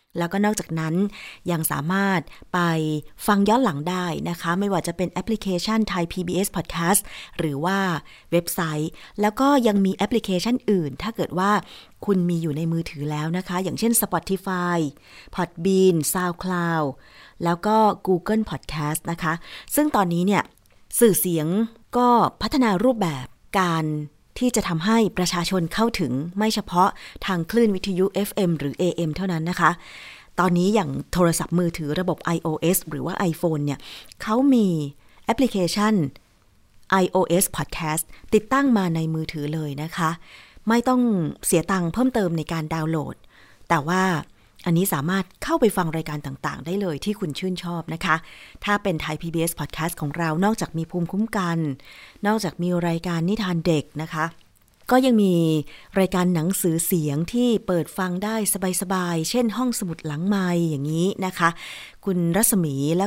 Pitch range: 160-200 Hz